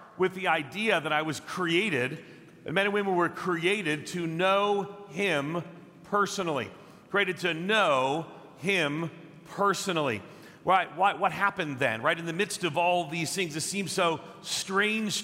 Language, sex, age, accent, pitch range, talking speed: English, male, 40-59, American, 155-195 Hz, 150 wpm